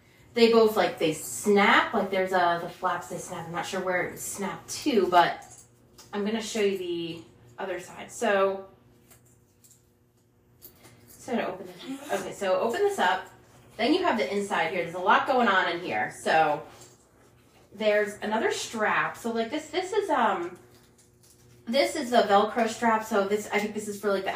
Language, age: English, 20-39